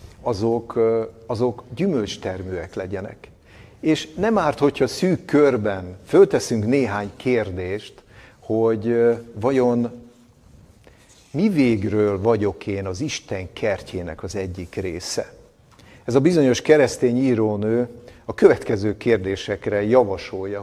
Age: 60-79